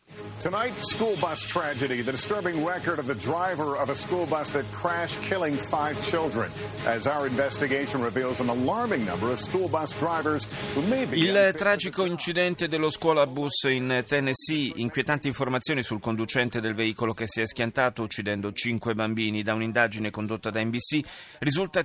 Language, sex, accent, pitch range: Italian, male, native, 115-145 Hz